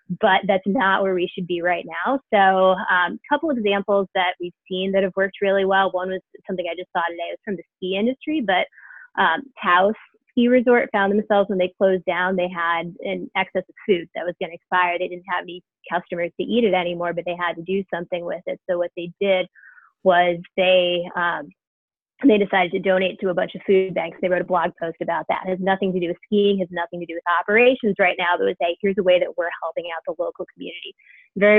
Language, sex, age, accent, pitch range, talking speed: English, female, 20-39, American, 175-200 Hz, 245 wpm